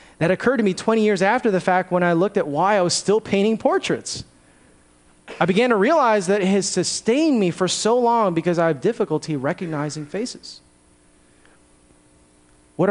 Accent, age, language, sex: American, 30-49, English, male